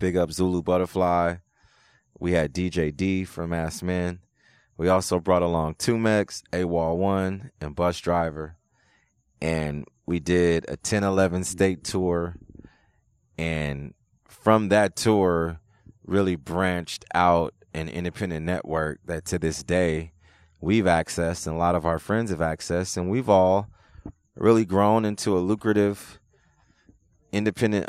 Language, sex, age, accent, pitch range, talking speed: English, male, 30-49, American, 85-95 Hz, 135 wpm